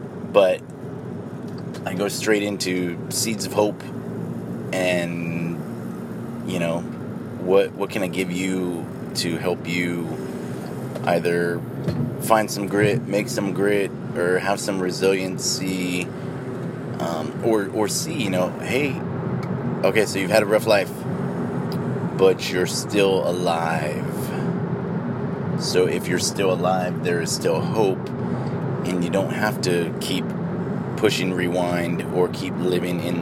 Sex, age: male, 30-49